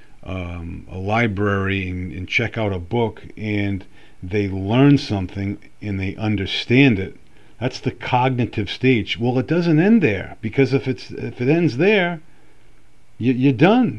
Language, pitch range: English, 100-135 Hz